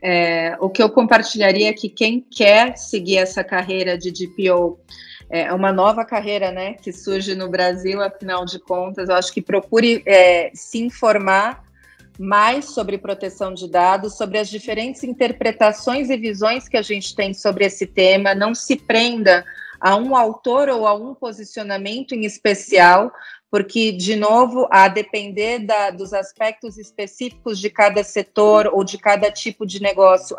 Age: 30-49